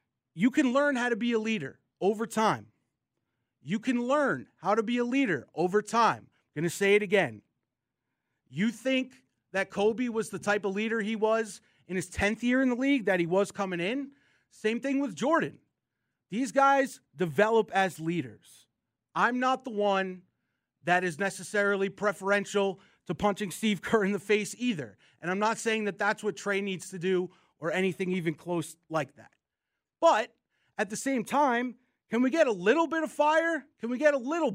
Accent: American